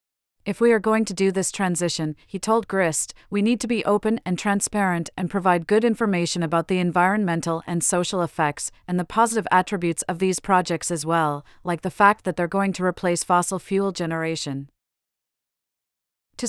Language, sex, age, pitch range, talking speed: English, female, 30-49, 170-210 Hz, 180 wpm